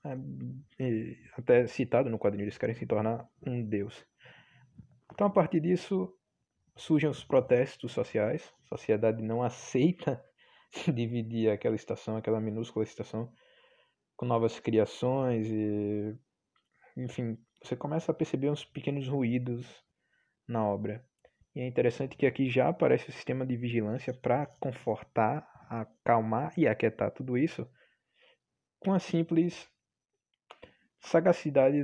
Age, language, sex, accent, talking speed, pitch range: 20-39, Portuguese, male, Brazilian, 120 wpm, 110-145 Hz